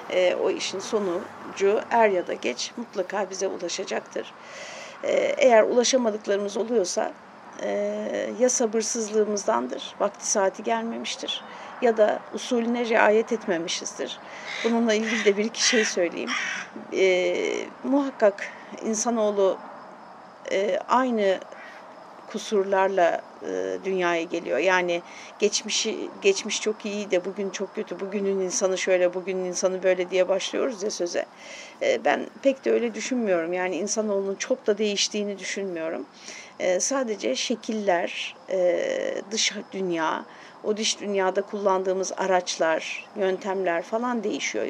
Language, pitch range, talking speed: Turkish, 190-230 Hz, 110 wpm